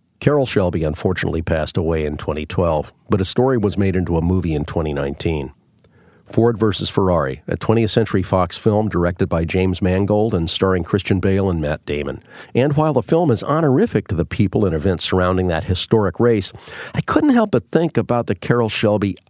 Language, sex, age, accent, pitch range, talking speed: English, male, 50-69, American, 90-115 Hz, 185 wpm